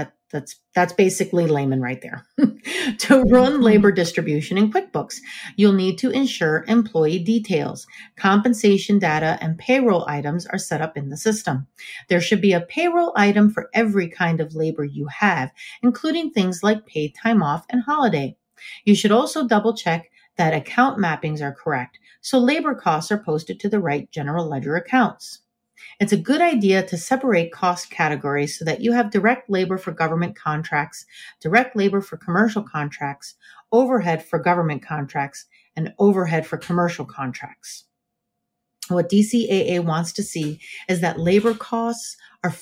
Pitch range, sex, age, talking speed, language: 160-220 Hz, female, 40-59, 160 wpm, English